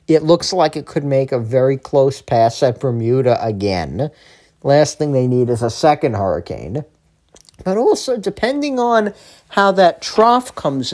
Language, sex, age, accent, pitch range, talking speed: English, male, 40-59, American, 135-190 Hz, 160 wpm